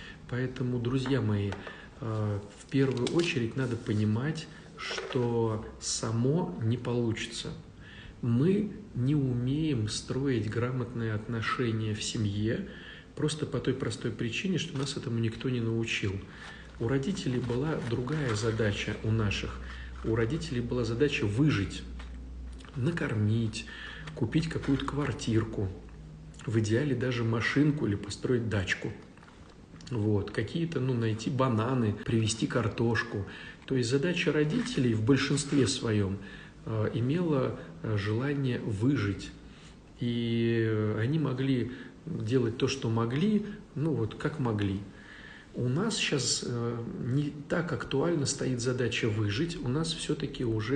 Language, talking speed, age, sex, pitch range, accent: Russian, 115 wpm, 40-59, male, 110-140 Hz, native